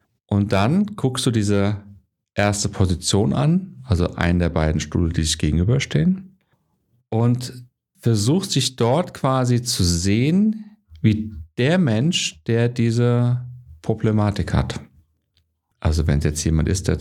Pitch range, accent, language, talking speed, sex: 95-125 Hz, German, German, 130 wpm, male